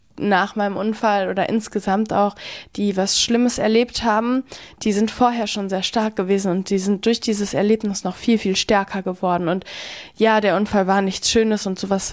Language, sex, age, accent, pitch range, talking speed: German, female, 10-29, German, 205-230 Hz, 190 wpm